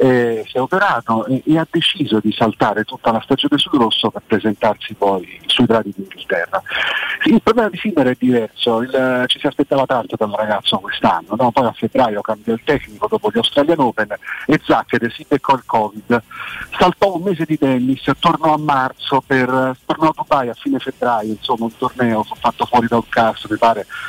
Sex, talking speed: male, 195 wpm